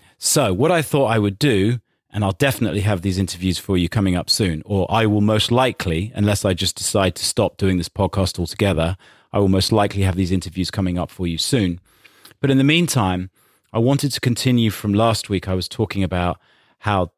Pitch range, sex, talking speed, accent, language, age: 95-115 Hz, male, 215 wpm, British, English, 30-49